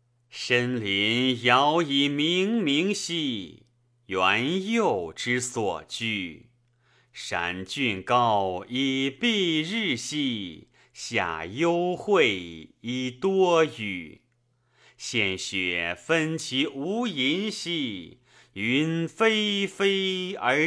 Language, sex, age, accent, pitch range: Chinese, male, 30-49, native, 115-170 Hz